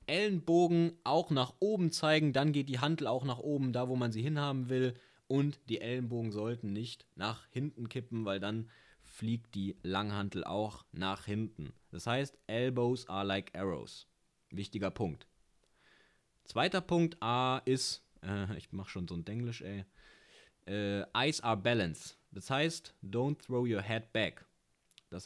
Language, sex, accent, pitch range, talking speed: German, male, German, 100-135 Hz, 155 wpm